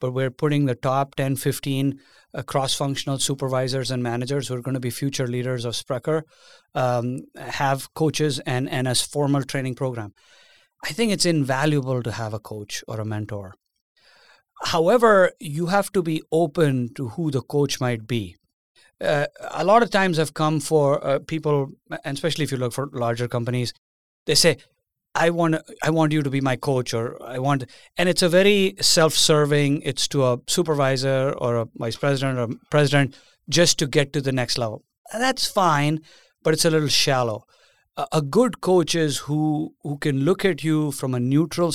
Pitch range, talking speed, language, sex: 130-160 Hz, 185 wpm, English, male